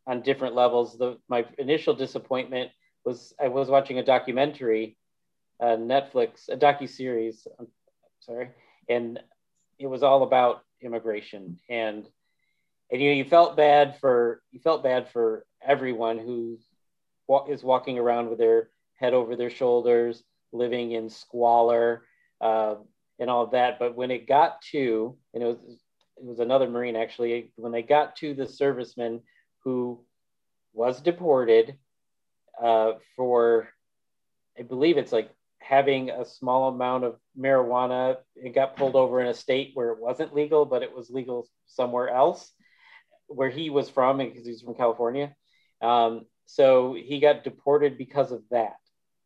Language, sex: English, male